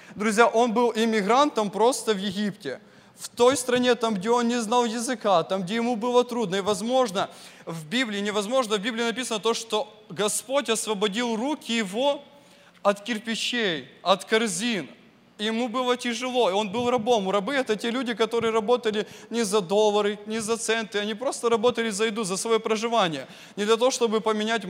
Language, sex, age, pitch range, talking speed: English, male, 20-39, 210-245 Hz, 170 wpm